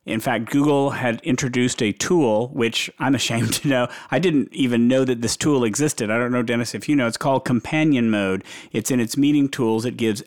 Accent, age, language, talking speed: American, 40-59, English, 220 wpm